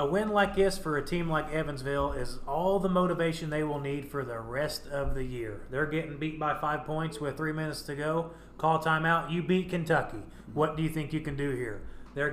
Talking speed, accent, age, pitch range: 230 wpm, American, 30-49, 130-160 Hz